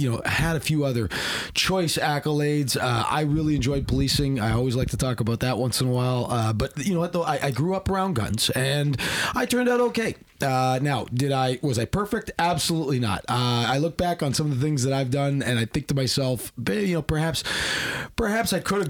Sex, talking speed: male, 235 wpm